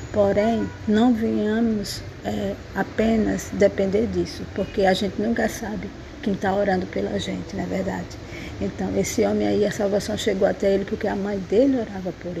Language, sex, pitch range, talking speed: Portuguese, female, 190-230 Hz, 165 wpm